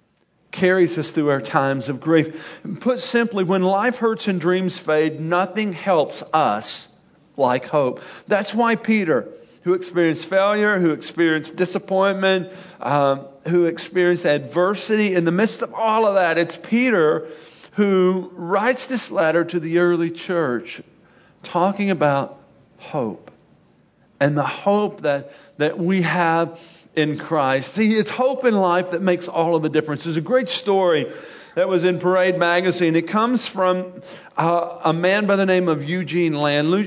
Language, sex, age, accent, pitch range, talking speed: English, male, 50-69, American, 160-195 Hz, 150 wpm